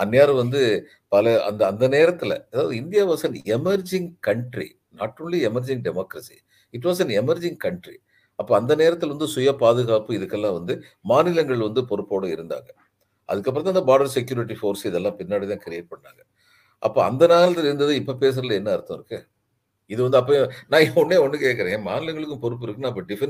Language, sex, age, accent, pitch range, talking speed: Tamil, male, 50-69, native, 115-195 Hz, 165 wpm